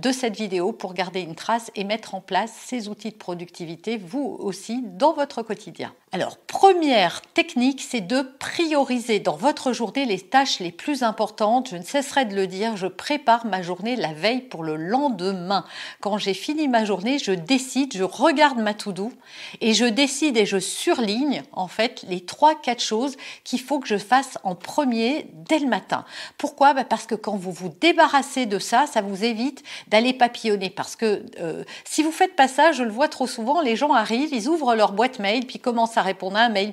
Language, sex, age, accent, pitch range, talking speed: French, female, 50-69, French, 210-275 Hz, 205 wpm